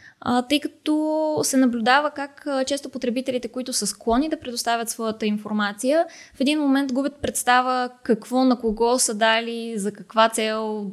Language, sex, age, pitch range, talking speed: Bulgarian, female, 20-39, 220-275 Hz, 160 wpm